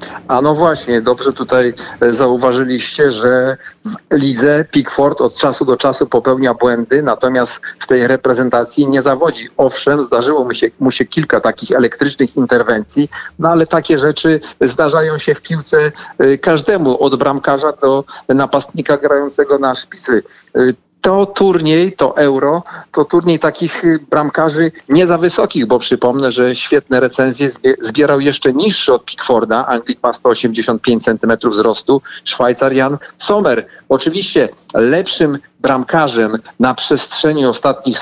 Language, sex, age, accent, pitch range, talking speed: Polish, male, 40-59, native, 130-155 Hz, 130 wpm